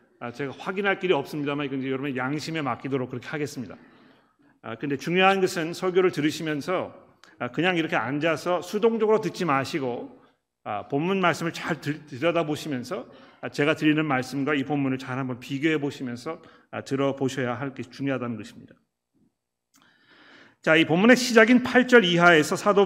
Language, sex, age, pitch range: Korean, male, 40-59, 140-180 Hz